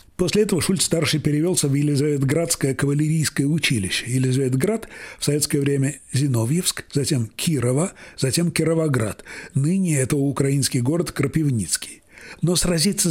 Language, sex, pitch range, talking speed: Russian, male, 135-165 Hz, 115 wpm